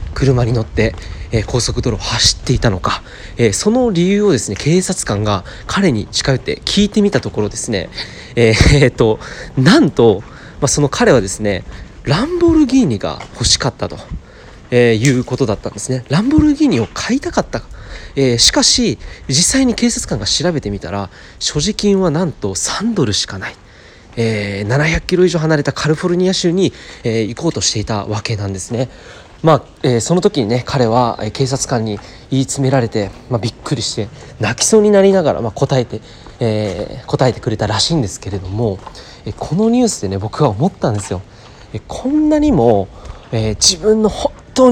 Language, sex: Japanese, male